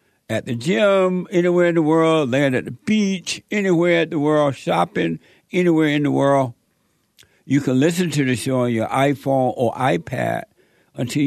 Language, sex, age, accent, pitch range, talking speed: English, male, 60-79, American, 125-160 Hz, 170 wpm